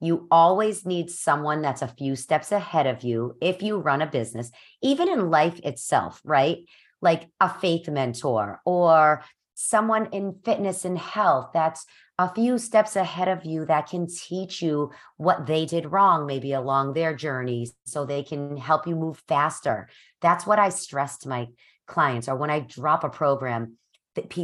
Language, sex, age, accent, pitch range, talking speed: English, female, 40-59, American, 130-170 Hz, 175 wpm